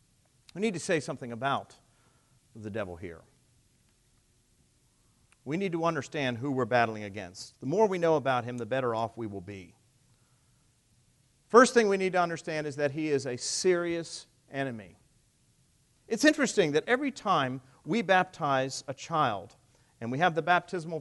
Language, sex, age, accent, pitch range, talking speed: English, male, 40-59, American, 125-175 Hz, 160 wpm